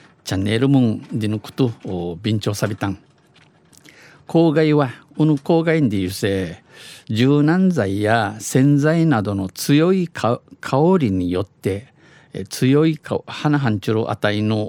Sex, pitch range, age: male, 105-145 Hz, 50-69